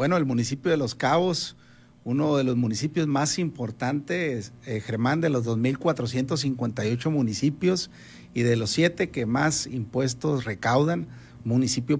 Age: 50-69